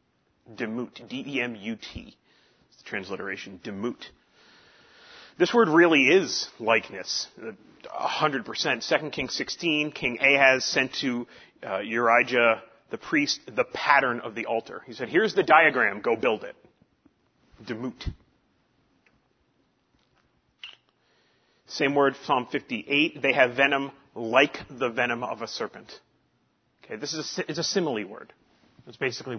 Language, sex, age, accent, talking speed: English, male, 30-49, American, 125 wpm